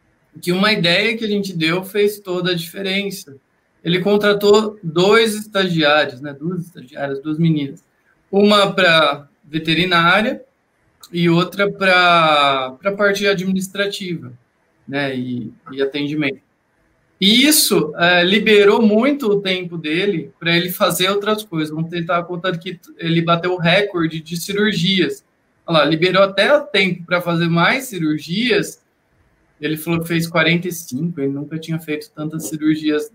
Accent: Brazilian